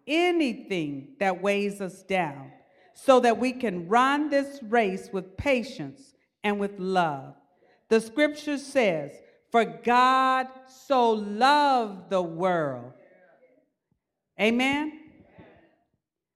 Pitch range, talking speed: 170-225 Hz, 100 wpm